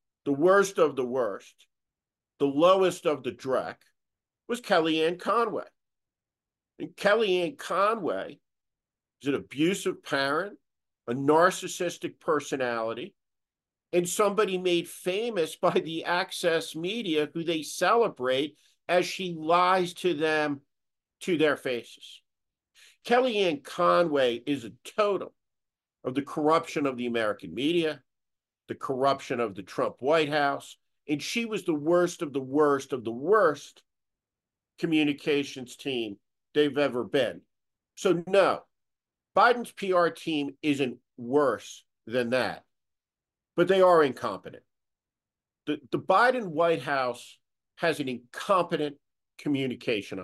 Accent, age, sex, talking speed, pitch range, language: American, 50-69, male, 120 wpm, 140-180 Hz, English